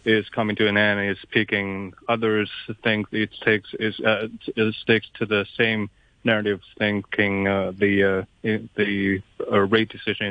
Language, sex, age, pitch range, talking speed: English, male, 30-49, 105-115 Hz, 145 wpm